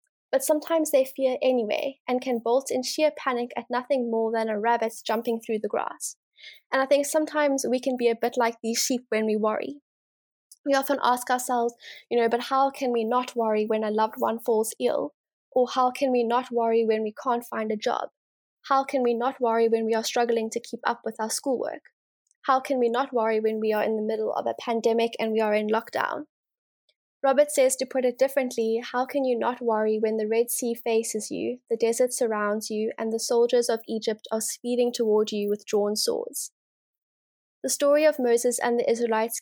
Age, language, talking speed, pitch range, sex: 10-29, English, 215 wpm, 225-260 Hz, female